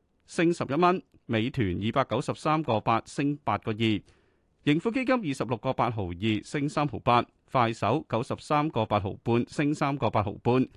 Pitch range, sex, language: 105-150 Hz, male, Chinese